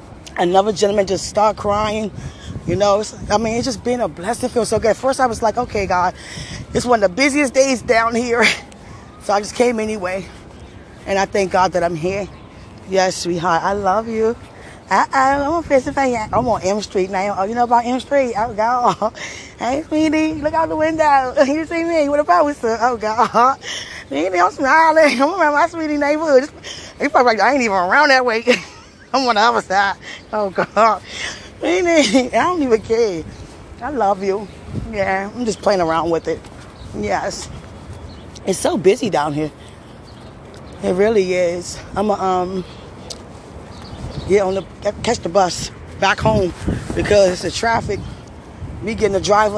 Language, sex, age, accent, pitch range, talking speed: English, female, 20-39, American, 185-250 Hz, 175 wpm